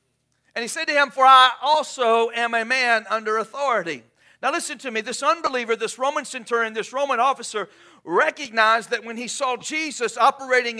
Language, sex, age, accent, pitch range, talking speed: English, male, 50-69, American, 210-265 Hz, 180 wpm